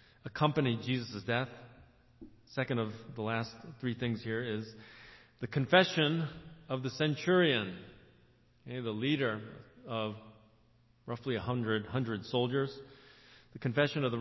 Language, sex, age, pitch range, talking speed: English, male, 40-59, 115-135 Hz, 115 wpm